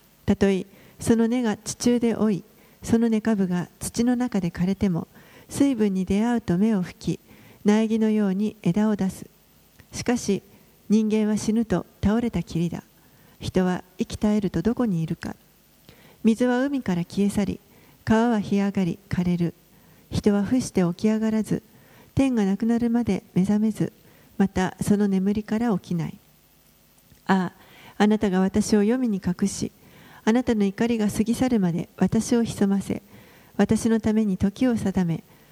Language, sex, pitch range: Japanese, female, 185-225 Hz